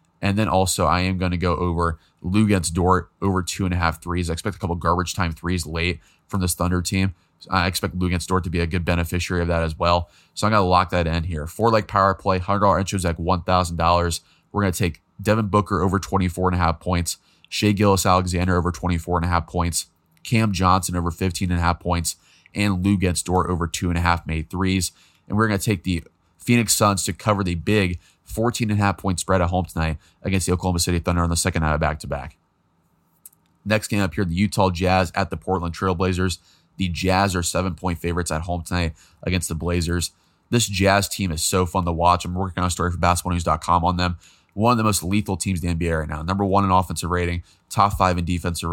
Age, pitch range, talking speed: 20-39, 85-95 Hz, 235 wpm